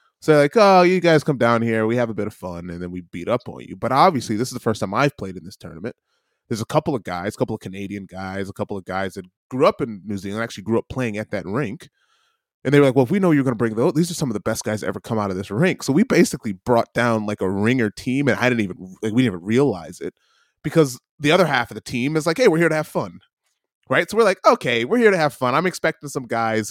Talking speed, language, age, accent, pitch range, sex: 295 wpm, English, 20-39, American, 105-165 Hz, male